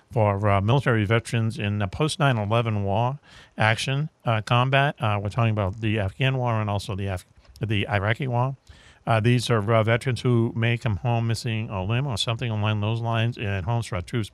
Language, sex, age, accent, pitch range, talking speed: English, male, 50-69, American, 105-125 Hz, 195 wpm